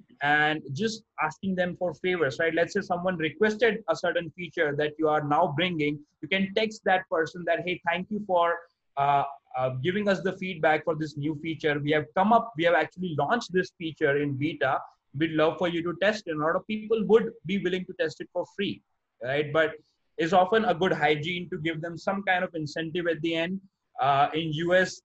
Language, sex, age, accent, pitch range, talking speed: English, male, 20-39, Indian, 150-185 Hz, 220 wpm